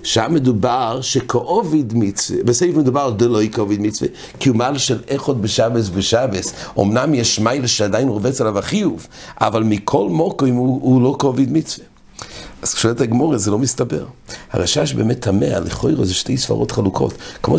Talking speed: 165 wpm